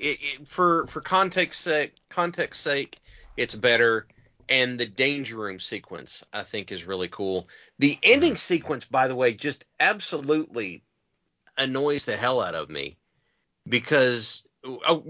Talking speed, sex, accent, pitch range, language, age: 145 wpm, male, American, 145-185 Hz, English, 40-59